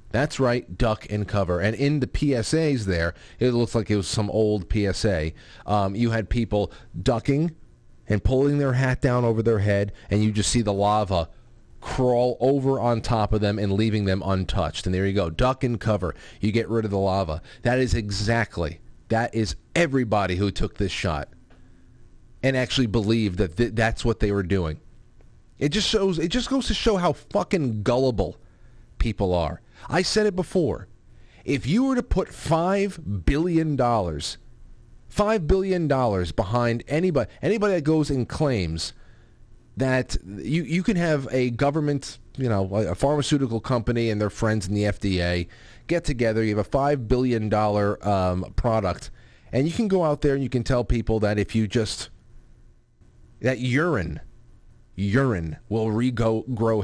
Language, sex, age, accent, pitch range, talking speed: English, male, 30-49, American, 100-135 Hz, 165 wpm